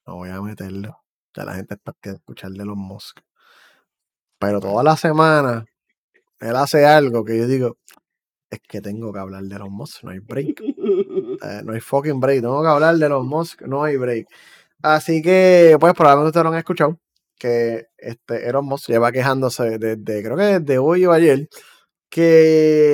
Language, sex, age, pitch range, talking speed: Spanish, male, 20-39, 115-165 Hz, 195 wpm